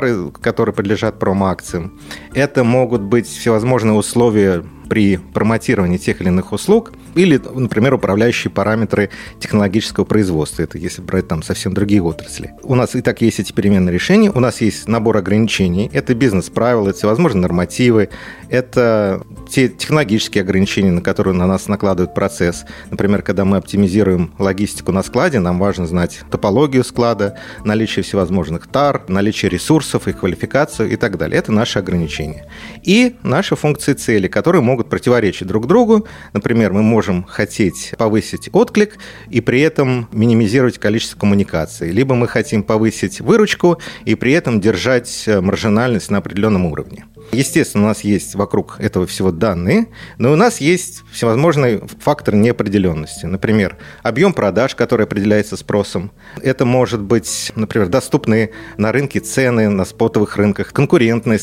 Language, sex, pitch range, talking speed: Russian, male, 95-125 Hz, 145 wpm